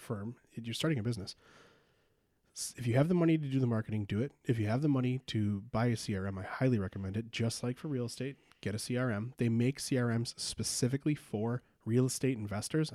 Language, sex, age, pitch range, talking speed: English, male, 30-49, 105-125 Hz, 210 wpm